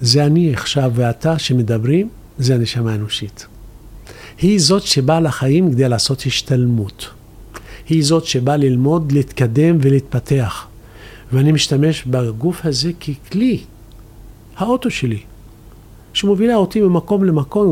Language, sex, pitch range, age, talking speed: Hebrew, male, 115-180 Hz, 50-69, 110 wpm